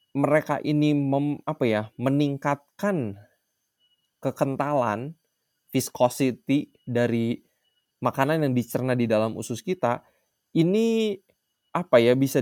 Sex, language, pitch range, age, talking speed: male, Indonesian, 130-175 Hz, 20-39, 95 wpm